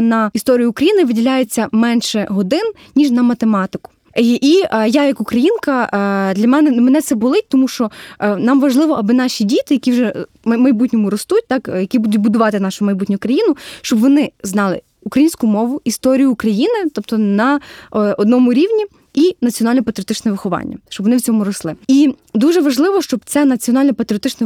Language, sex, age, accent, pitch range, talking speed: Ukrainian, female, 20-39, native, 220-285 Hz, 155 wpm